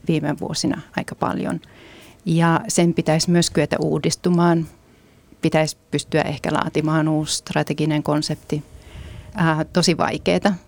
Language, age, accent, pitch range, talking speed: Finnish, 30-49, native, 160-195 Hz, 110 wpm